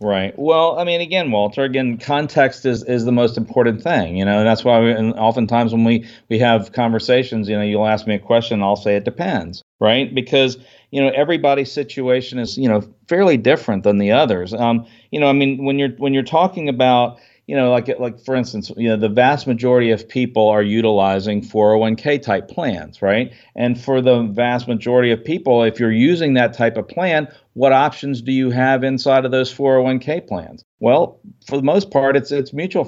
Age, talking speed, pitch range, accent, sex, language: 50-69, 210 wpm, 115-135 Hz, American, male, English